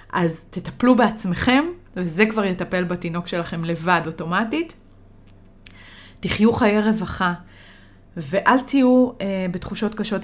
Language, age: Hebrew, 30-49